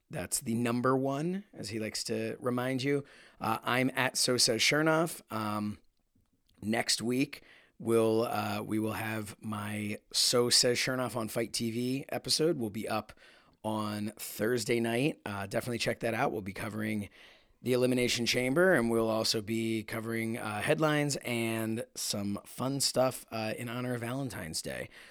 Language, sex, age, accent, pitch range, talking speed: English, male, 30-49, American, 110-135 Hz, 155 wpm